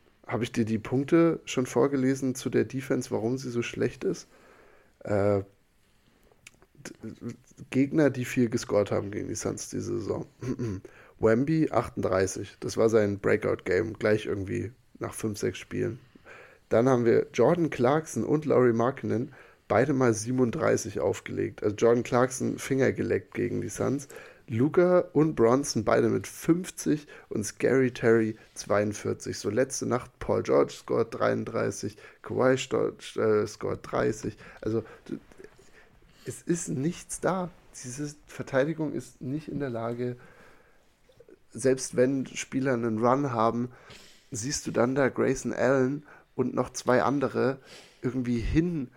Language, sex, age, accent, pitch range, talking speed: German, male, 10-29, German, 115-135 Hz, 130 wpm